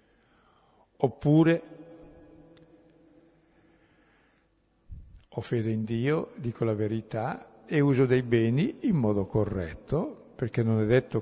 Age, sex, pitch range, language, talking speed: 60-79, male, 110-135 Hz, Italian, 100 wpm